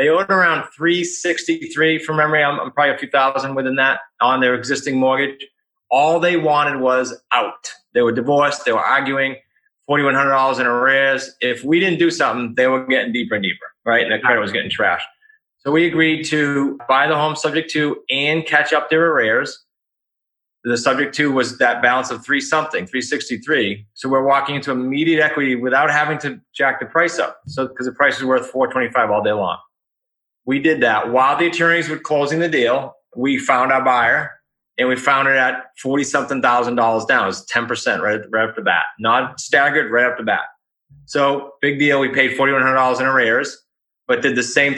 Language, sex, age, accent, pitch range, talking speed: English, male, 30-49, American, 130-150 Hz, 205 wpm